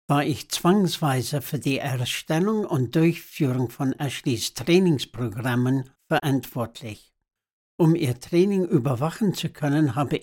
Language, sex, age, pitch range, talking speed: German, male, 60-79, 130-165 Hz, 110 wpm